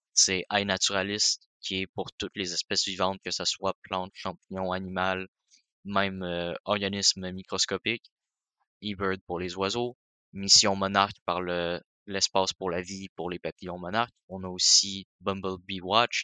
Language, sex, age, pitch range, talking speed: French, male, 20-39, 95-105 Hz, 150 wpm